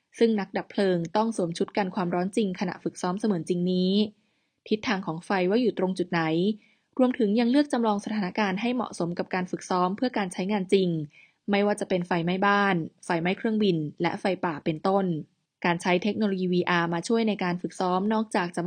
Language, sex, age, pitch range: Thai, female, 20-39, 180-215 Hz